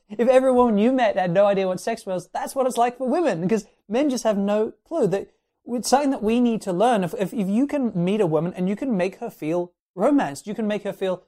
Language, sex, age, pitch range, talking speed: English, male, 30-49, 165-220 Hz, 265 wpm